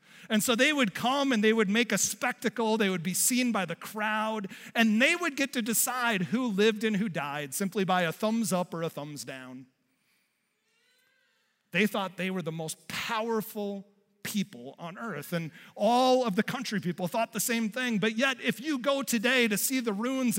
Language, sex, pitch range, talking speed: English, male, 180-230 Hz, 200 wpm